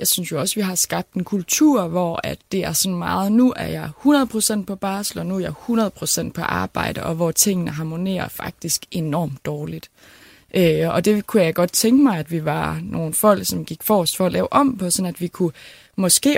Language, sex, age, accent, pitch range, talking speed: Danish, female, 20-39, native, 165-220 Hz, 225 wpm